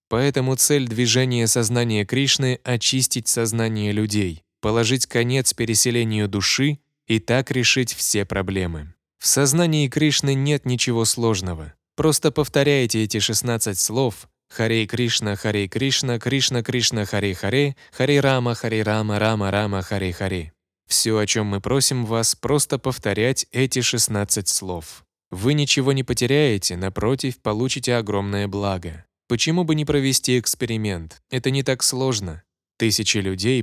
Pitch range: 105-130 Hz